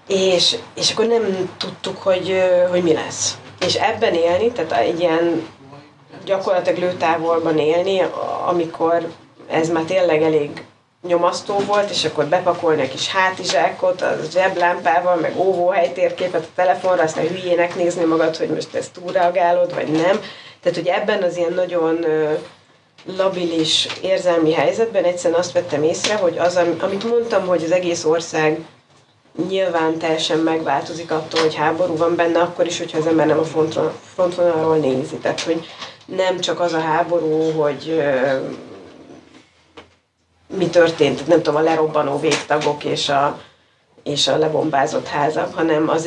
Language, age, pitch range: Hungarian, 30-49, 160-180 Hz